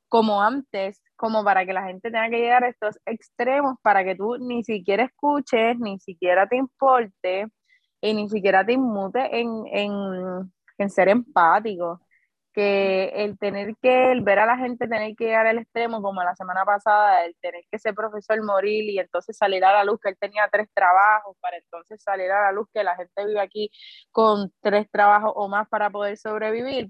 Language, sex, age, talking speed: Spanish, female, 20-39, 195 wpm